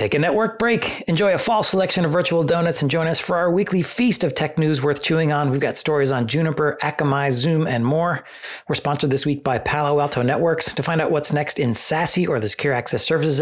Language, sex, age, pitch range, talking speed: English, male, 30-49, 130-160 Hz, 235 wpm